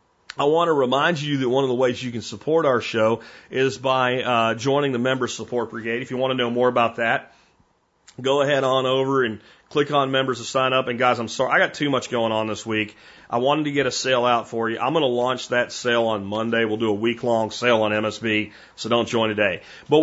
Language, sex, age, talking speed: English, male, 40-59, 250 wpm